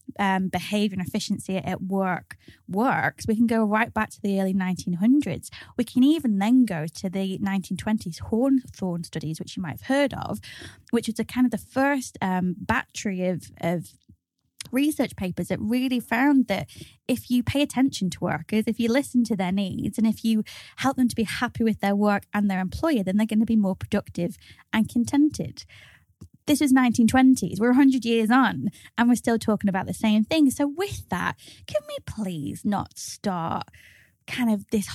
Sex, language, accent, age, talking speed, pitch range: female, English, British, 20-39, 190 wpm, 190-245 Hz